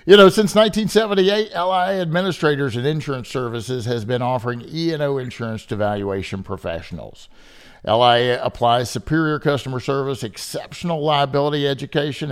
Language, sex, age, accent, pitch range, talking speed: English, male, 50-69, American, 105-150 Hz, 125 wpm